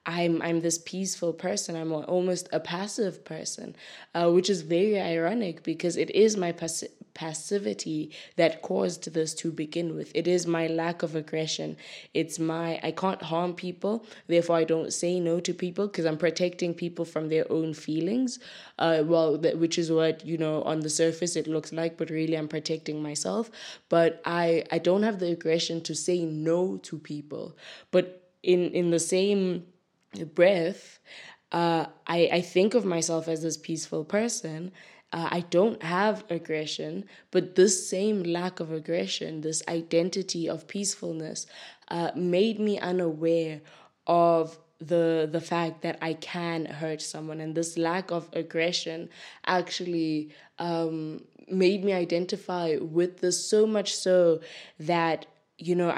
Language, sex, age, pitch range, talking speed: English, female, 20-39, 160-180 Hz, 160 wpm